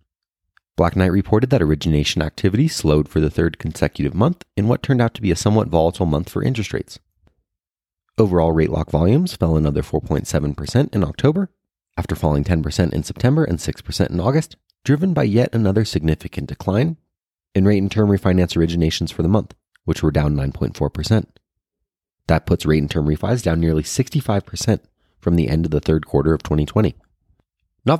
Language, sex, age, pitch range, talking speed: English, male, 30-49, 75-105 Hz, 175 wpm